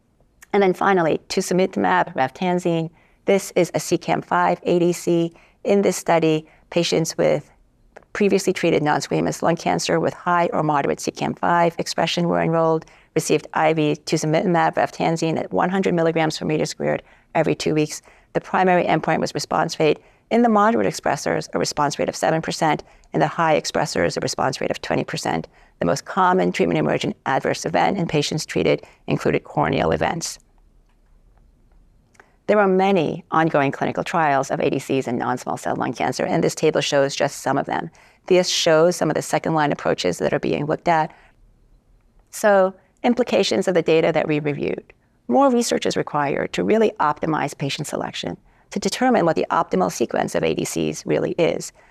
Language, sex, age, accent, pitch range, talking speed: English, female, 50-69, American, 155-195 Hz, 160 wpm